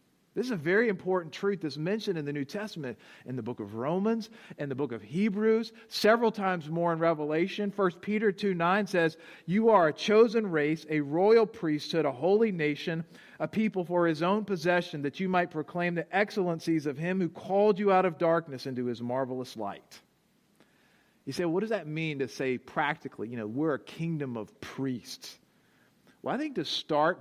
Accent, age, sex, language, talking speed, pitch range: American, 50-69, male, English, 195 wpm, 150-210 Hz